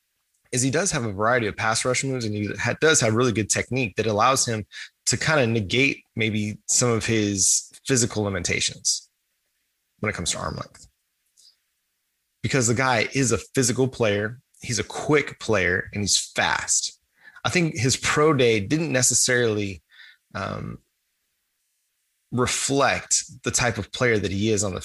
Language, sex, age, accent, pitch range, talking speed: English, male, 20-39, American, 110-130 Hz, 165 wpm